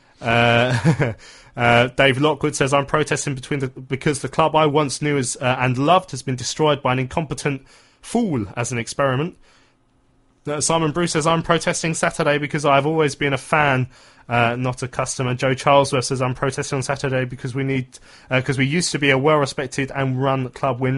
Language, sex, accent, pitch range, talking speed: English, male, British, 120-145 Hz, 195 wpm